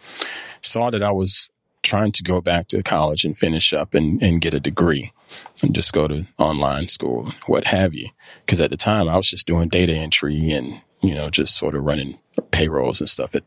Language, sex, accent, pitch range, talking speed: English, male, American, 80-95 Hz, 215 wpm